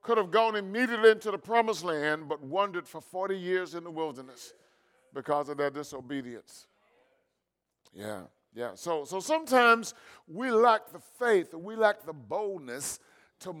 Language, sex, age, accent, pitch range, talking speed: English, male, 50-69, American, 140-205 Hz, 150 wpm